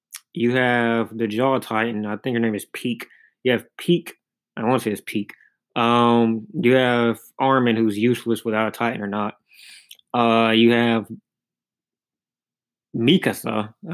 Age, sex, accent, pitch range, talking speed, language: 20-39, male, American, 110-135 Hz, 155 wpm, English